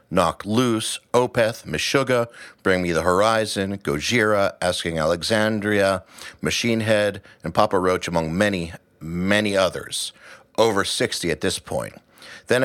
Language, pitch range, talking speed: English, 90-105 Hz, 125 wpm